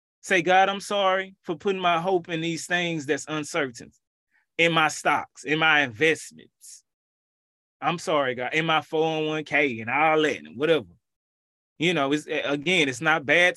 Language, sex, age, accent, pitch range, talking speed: English, male, 20-39, American, 155-225 Hz, 165 wpm